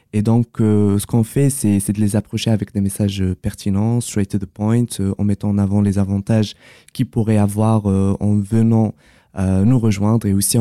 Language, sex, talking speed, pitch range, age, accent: French, male, 210 wpm, 100-115 Hz, 20-39, French